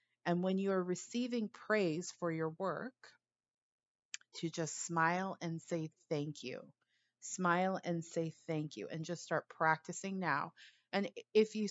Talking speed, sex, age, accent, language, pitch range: 150 wpm, female, 30-49, American, English, 155-185 Hz